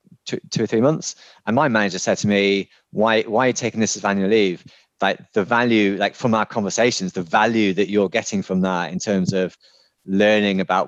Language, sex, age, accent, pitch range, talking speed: English, male, 30-49, British, 95-115 Hz, 215 wpm